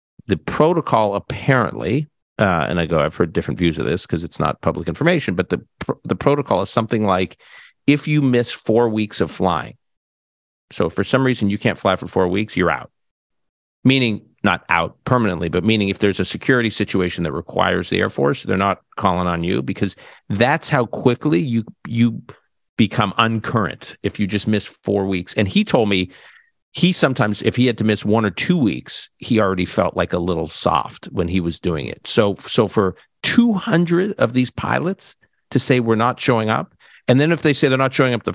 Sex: male